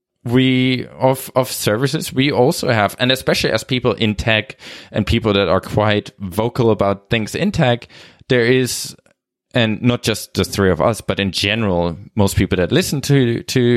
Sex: male